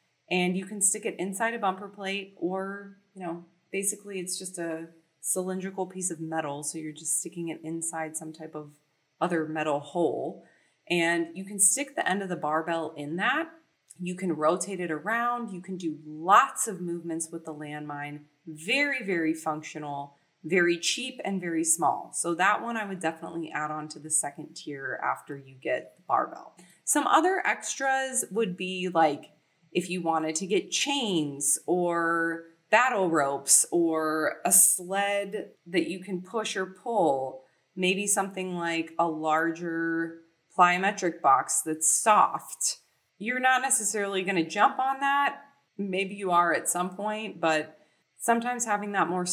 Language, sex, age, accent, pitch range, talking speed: English, female, 30-49, American, 160-205 Hz, 160 wpm